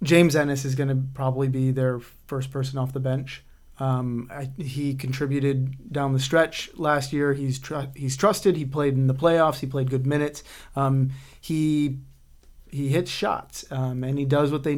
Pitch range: 130-150 Hz